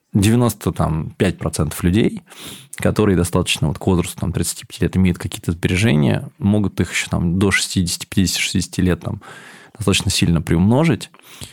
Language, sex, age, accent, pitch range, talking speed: Russian, male, 20-39, native, 90-105 Hz, 100 wpm